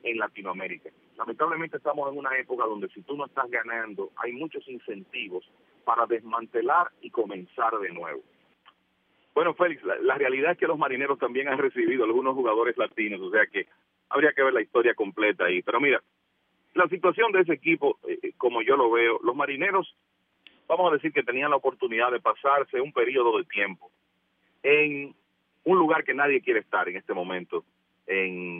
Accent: Venezuelan